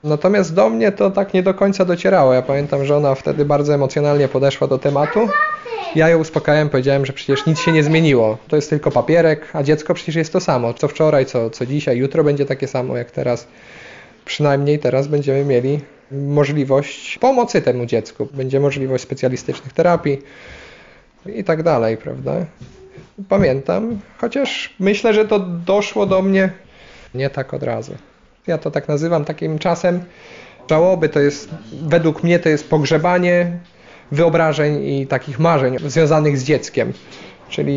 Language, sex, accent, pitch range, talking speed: Polish, male, native, 135-175 Hz, 160 wpm